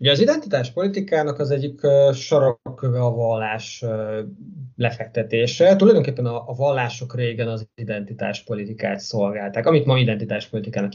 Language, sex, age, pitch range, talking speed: Hungarian, male, 20-39, 110-135 Hz, 120 wpm